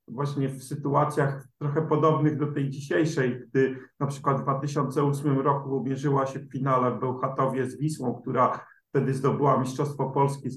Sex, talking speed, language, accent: male, 160 wpm, Polish, native